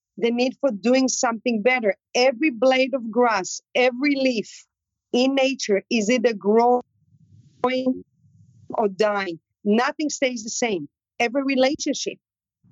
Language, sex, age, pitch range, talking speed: English, female, 40-59, 215-275 Hz, 120 wpm